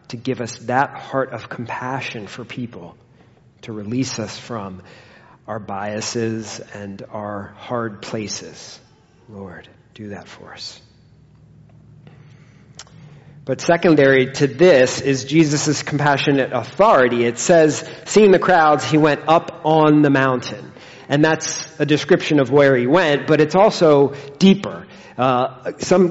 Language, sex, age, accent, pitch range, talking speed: English, male, 40-59, American, 125-160 Hz, 130 wpm